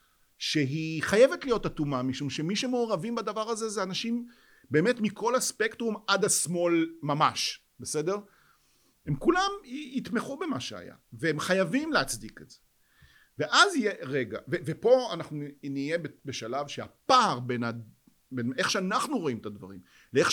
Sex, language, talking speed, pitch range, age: male, Hebrew, 135 wpm, 130-190 Hz, 50-69